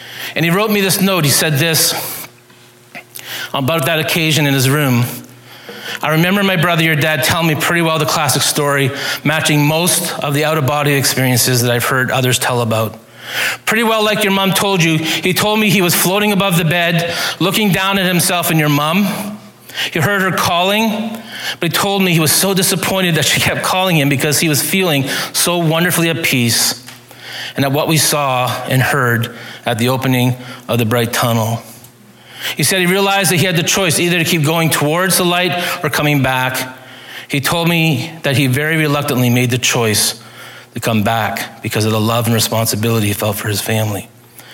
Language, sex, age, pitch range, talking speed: English, male, 40-59, 125-175 Hz, 195 wpm